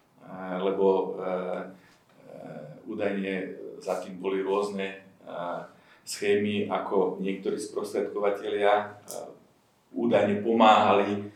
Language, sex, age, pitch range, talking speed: Slovak, male, 40-59, 95-100 Hz, 75 wpm